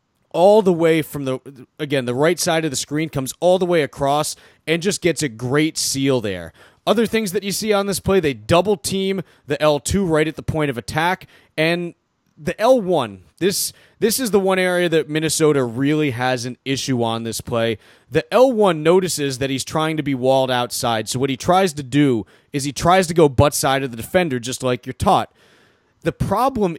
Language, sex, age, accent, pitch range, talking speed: English, male, 30-49, American, 135-175 Hz, 210 wpm